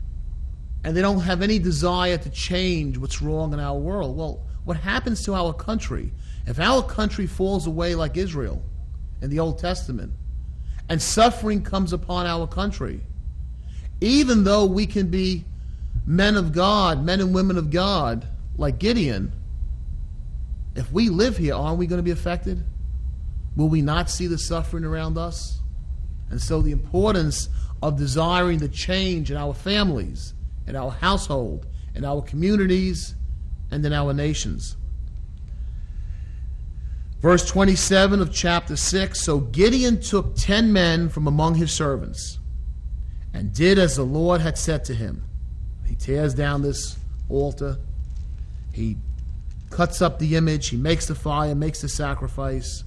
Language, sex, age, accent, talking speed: English, male, 30-49, American, 150 wpm